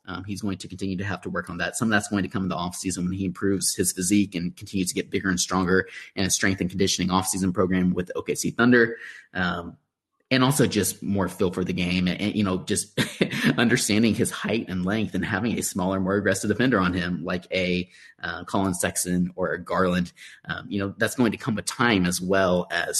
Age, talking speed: 30-49, 230 wpm